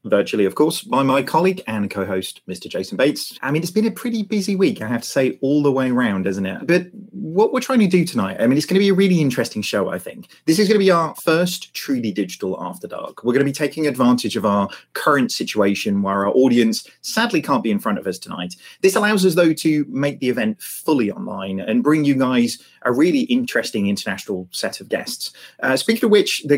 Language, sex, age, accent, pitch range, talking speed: English, male, 30-49, British, 120-190 Hz, 240 wpm